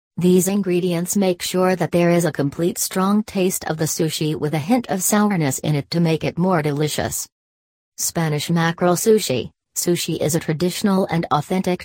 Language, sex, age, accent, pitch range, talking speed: English, female, 40-59, American, 150-180 Hz, 175 wpm